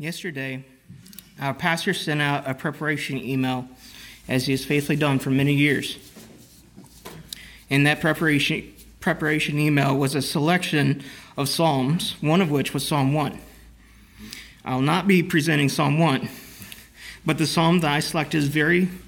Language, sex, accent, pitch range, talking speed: English, male, American, 130-165 Hz, 145 wpm